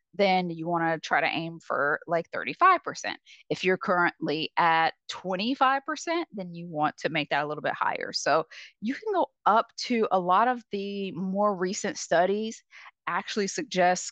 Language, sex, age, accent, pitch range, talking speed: English, female, 20-39, American, 165-225 Hz, 170 wpm